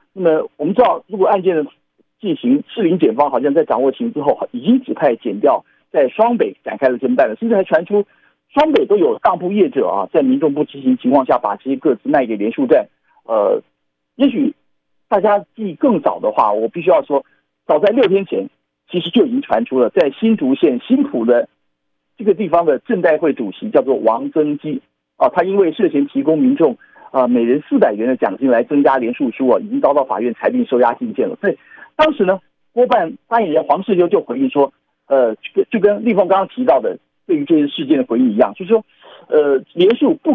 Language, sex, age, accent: Chinese, male, 50-69, native